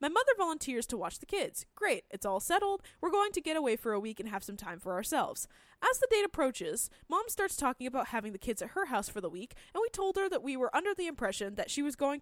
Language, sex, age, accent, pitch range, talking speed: English, female, 10-29, American, 230-365 Hz, 275 wpm